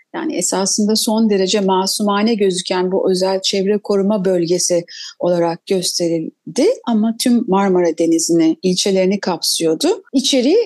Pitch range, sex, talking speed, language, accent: 195-280 Hz, female, 115 wpm, Turkish, native